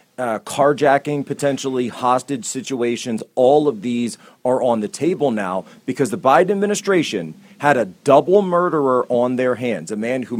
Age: 40-59